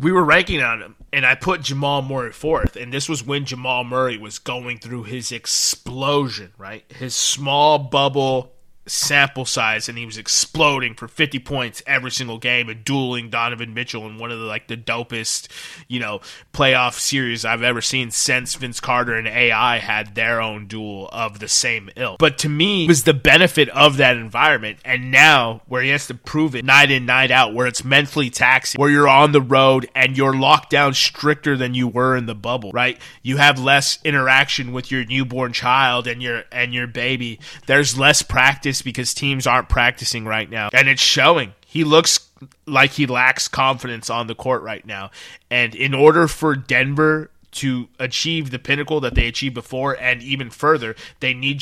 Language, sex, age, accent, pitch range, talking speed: English, male, 20-39, American, 120-140 Hz, 195 wpm